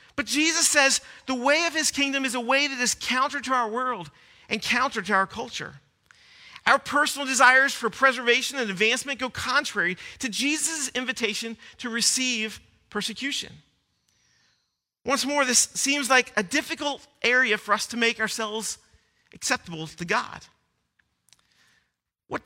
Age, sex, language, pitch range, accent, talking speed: 40-59, male, English, 220-270 Hz, American, 145 wpm